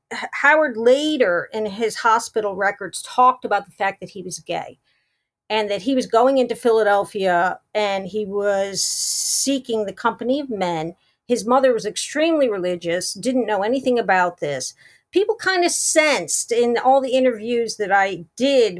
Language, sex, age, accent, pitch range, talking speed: English, female, 50-69, American, 195-255 Hz, 160 wpm